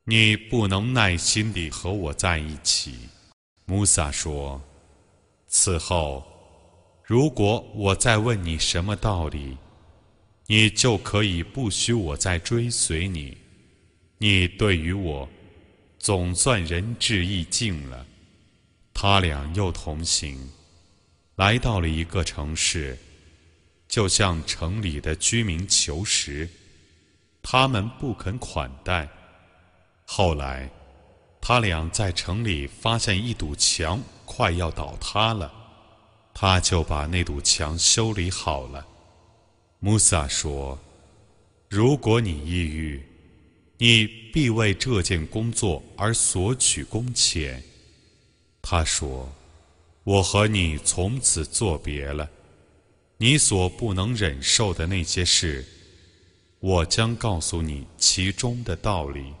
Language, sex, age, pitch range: Arabic, male, 30-49, 80-105 Hz